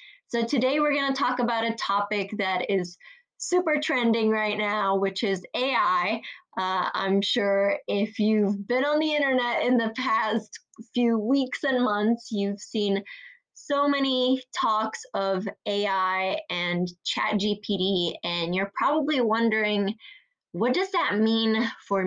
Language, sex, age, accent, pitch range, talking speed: English, female, 20-39, American, 185-245 Hz, 145 wpm